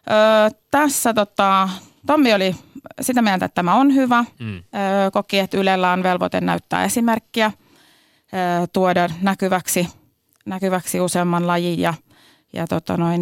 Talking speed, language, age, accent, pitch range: 130 wpm, Finnish, 30-49, native, 170-210 Hz